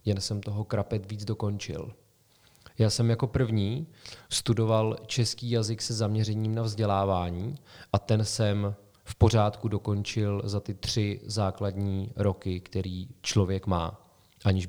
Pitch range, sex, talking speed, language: 100-115 Hz, male, 130 wpm, Czech